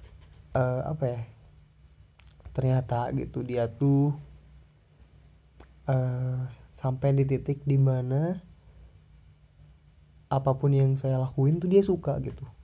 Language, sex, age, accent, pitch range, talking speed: Indonesian, male, 20-39, native, 115-140 Hz, 95 wpm